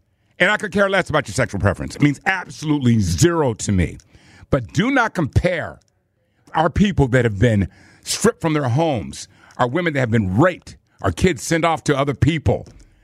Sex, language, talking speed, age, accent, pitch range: male, English, 190 wpm, 50-69, American, 120-170 Hz